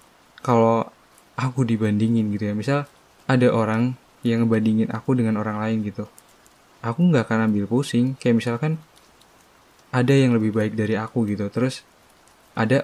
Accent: native